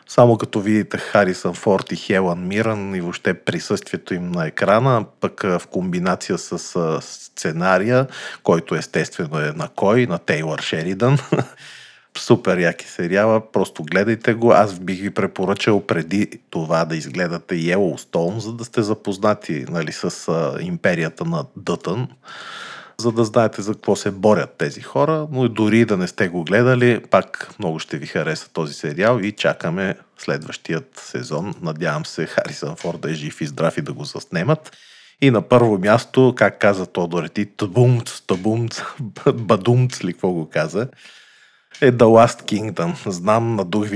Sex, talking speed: male, 150 wpm